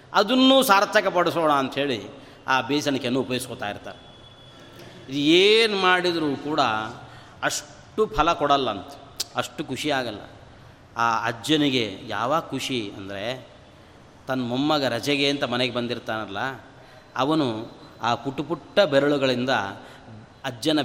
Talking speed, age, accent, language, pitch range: 100 wpm, 30-49, native, Kannada, 120-150 Hz